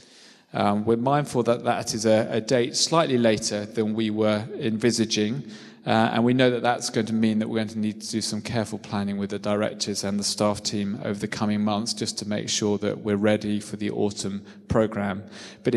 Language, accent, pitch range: English, British, 105-125 Hz